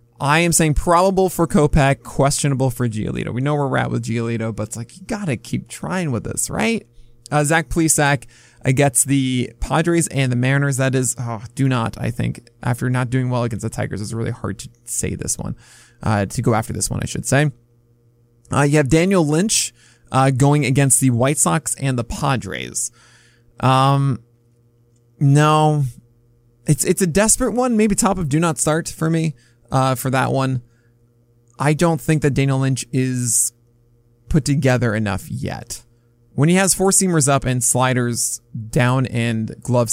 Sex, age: male, 20-39